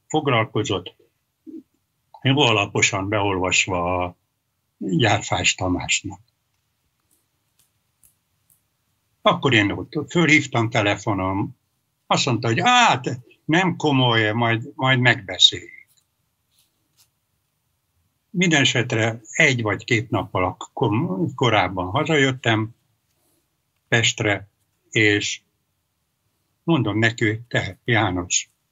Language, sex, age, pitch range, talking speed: Hungarian, male, 60-79, 100-130 Hz, 75 wpm